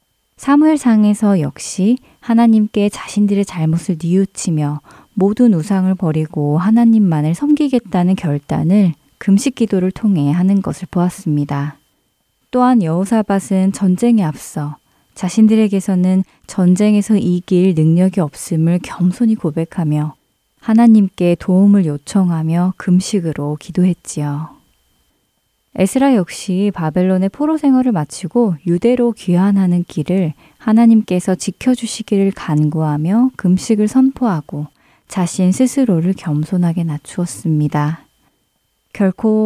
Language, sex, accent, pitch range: Korean, female, native, 165-215 Hz